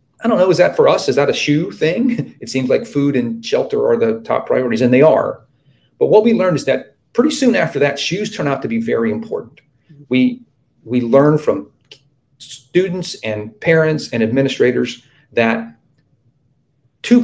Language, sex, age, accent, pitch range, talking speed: English, male, 40-59, American, 120-165 Hz, 185 wpm